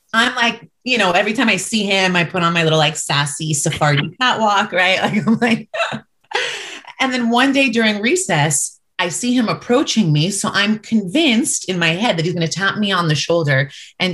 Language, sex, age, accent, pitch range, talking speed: English, female, 30-49, American, 150-215 Hz, 210 wpm